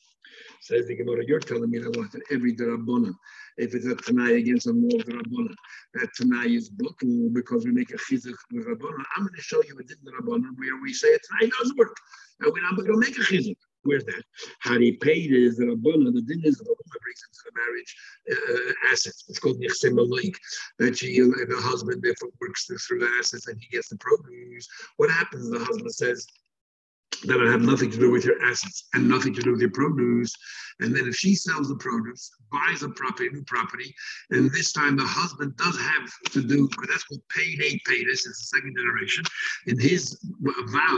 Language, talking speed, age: English, 210 wpm, 60-79